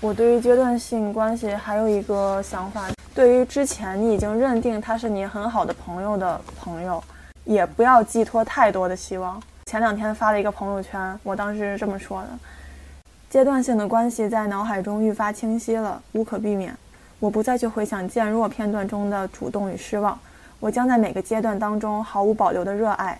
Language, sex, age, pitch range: Chinese, female, 20-39, 200-230 Hz